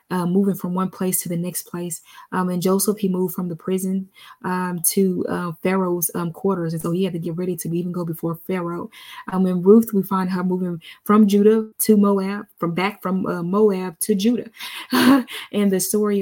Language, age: English, 20-39